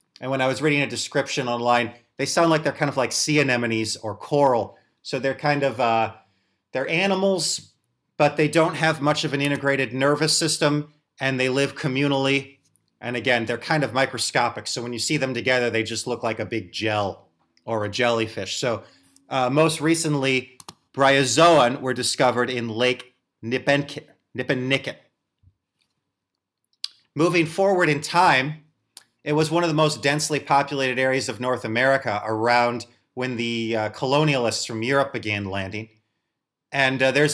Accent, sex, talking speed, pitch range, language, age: American, male, 160 wpm, 120-145 Hz, English, 30-49